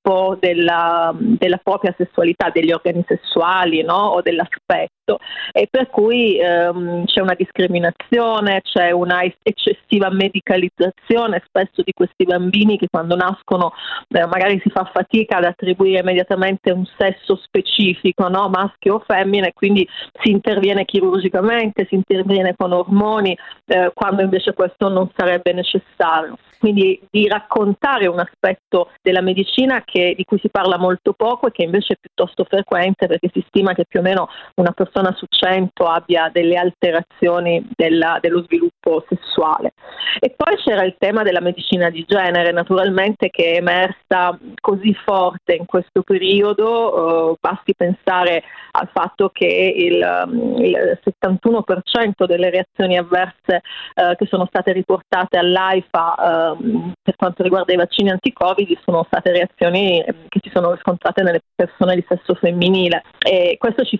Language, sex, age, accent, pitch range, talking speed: Italian, female, 40-59, native, 180-200 Hz, 145 wpm